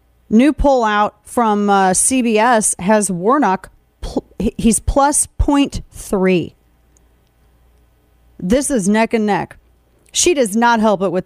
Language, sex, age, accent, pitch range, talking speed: English, female, 40-59, American, 190-245 Hz, 130 wpm